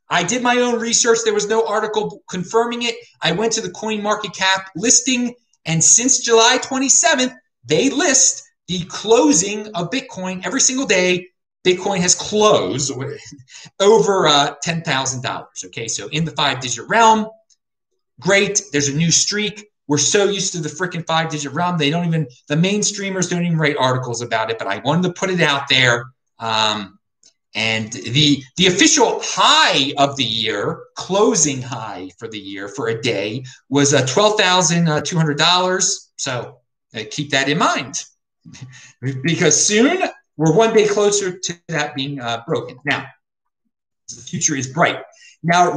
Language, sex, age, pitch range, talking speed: English, male, 30-49, 145-220 Hz, 155 wpm